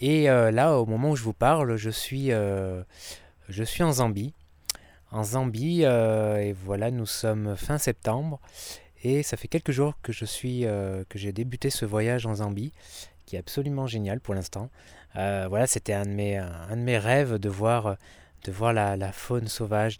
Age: 20-39